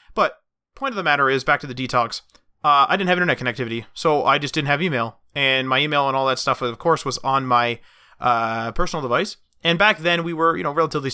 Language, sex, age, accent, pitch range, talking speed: English, male, 30-49, American, 125-165 Hz, 240 wpm